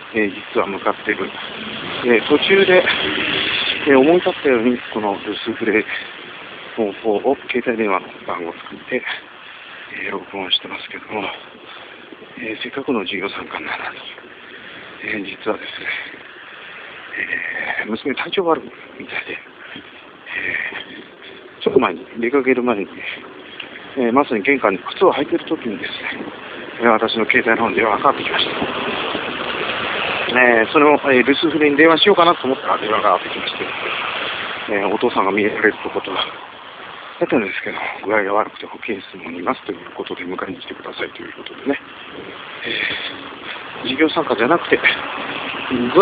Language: Japanese